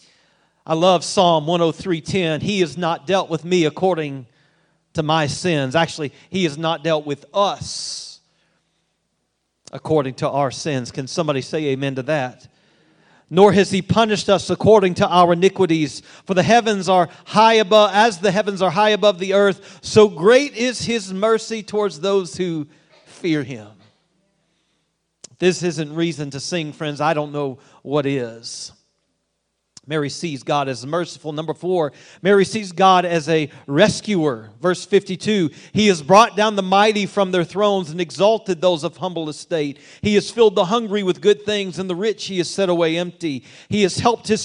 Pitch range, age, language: 150-195 Hz, 40-59, English